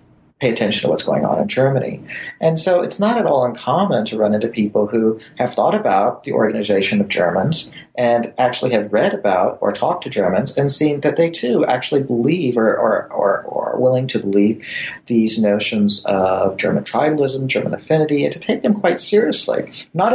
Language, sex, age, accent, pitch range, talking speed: English, male, 40-59, American, 105-150 Hz, 190 wpm